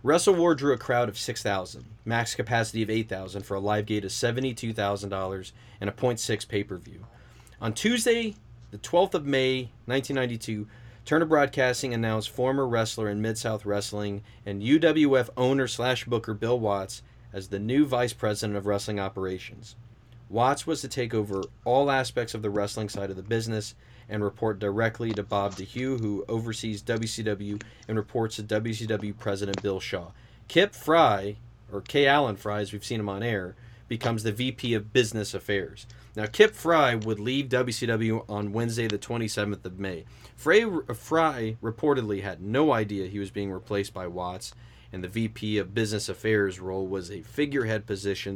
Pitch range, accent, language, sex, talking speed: 100-120 Hz, American, English, male, 165 wpm